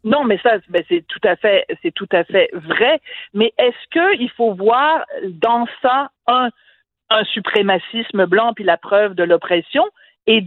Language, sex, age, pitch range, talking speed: French, female, 50-69, 200-290 Hz, 180 wpm